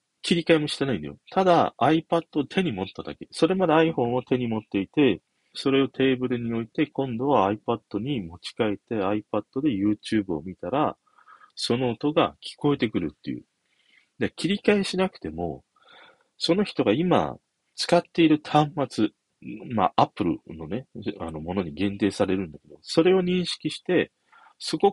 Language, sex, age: Japanese, male, 40-59